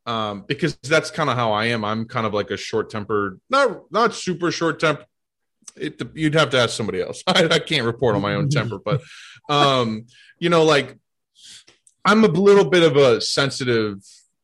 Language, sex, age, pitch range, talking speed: English, male, 20-39, 105-140 Hz, 190 wpm